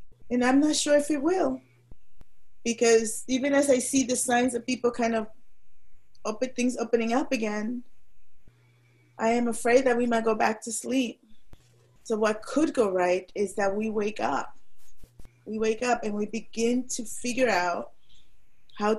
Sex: female